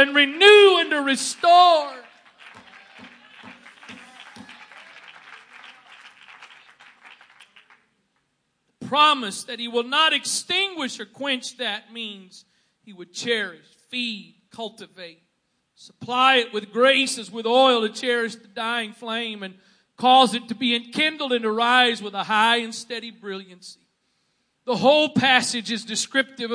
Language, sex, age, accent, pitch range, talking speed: English, male, 50-69, American, 220-260 Hz, 120 wpm